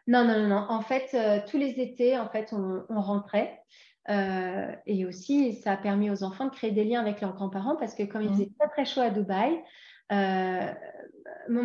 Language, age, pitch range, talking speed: French, 30-49, 200-250 Hz, 205 wpm